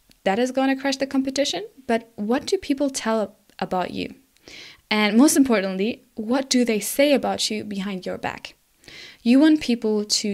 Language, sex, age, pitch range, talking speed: English, female, 20-39, 205-250 Hz, 170 wpm